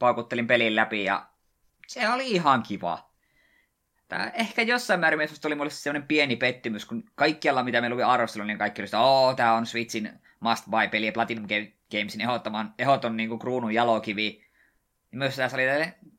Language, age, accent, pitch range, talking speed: Finnish, 20-39, native, 105-125 Hz, 170 wpm